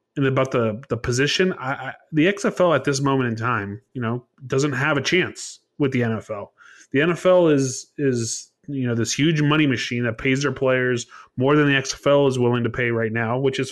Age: 30-49